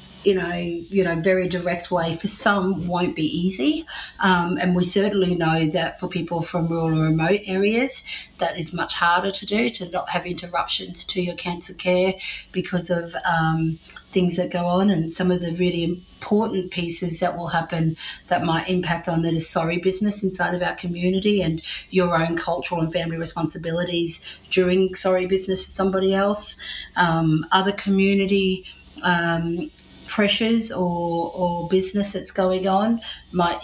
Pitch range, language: 175-195 Hz, English